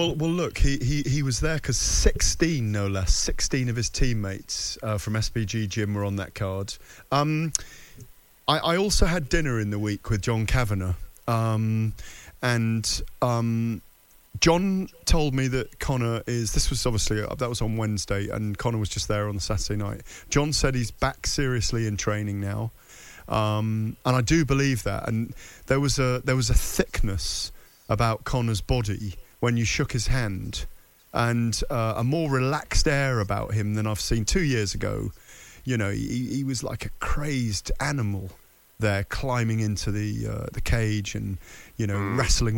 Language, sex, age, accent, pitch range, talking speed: English, male, 30-49, British, 105-135 Hz, 180 wpm